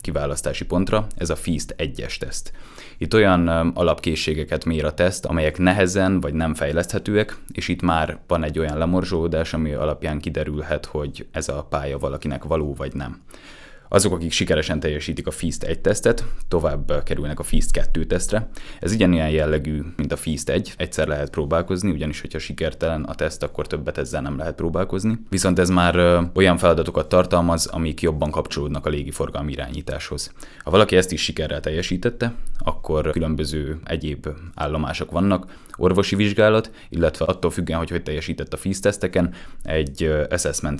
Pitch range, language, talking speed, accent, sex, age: 75-90 Hz, English, 155 wpm, Finnish, male, 20-39